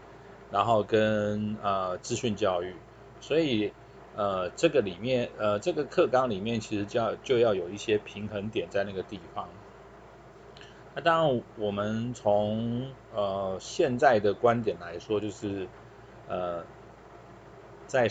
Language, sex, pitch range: Chinese, male, 105-120 Hz